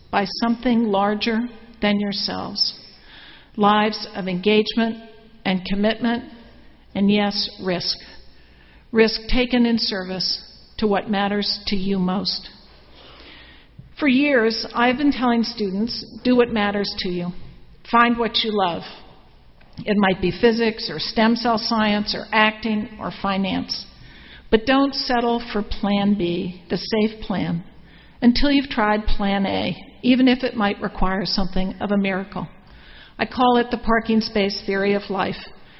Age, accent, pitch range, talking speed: 60-79, American, 195-230 Hz, 135 wpm